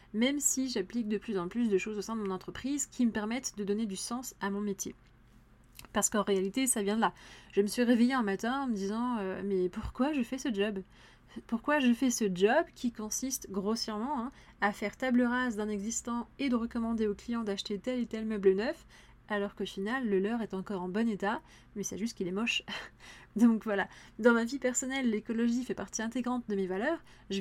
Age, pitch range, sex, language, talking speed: 30-49, 200-250 Hz, female, French, 225 wpm